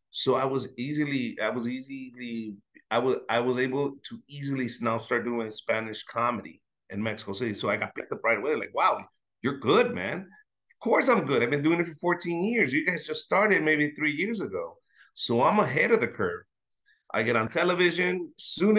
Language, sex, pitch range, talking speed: English, male, 115-150 Hz, 205 wpm